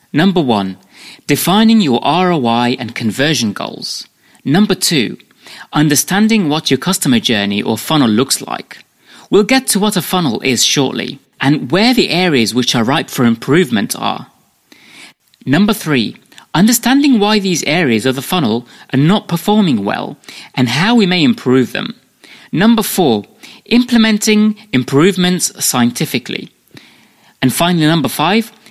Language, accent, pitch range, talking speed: English, British, 125-210 Hz, 135 wpm